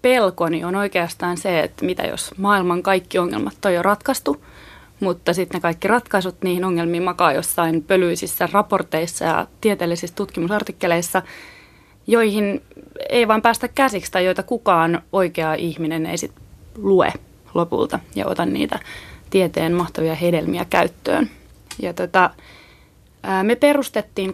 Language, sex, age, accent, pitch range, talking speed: Finnish, female, 20-39, native, 175-220 Hz, 130 wpm